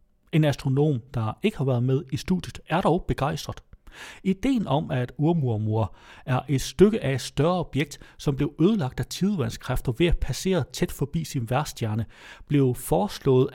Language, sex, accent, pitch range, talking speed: Danish, male, native, 125-160 Hz, 165 wpm